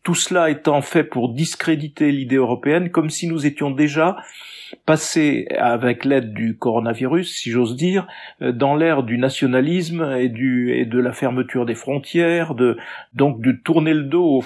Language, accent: French, French